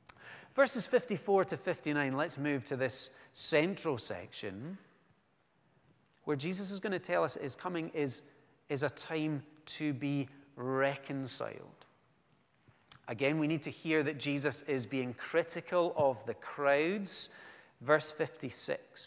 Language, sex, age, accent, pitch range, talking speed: English, male, 40-59, British, 130-160 Hz, 130 wpm